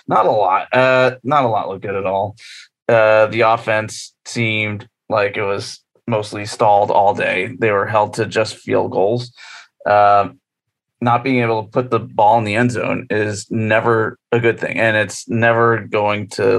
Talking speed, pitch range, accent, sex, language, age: 185 wpm, 105-125 Hz, American, male, English, 30-49